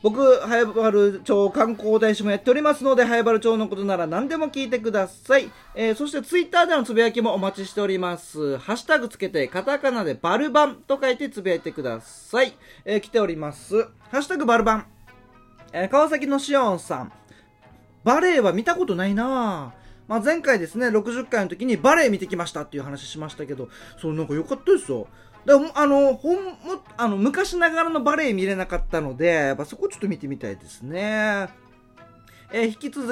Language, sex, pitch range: Japanese, male, 175-265 Hz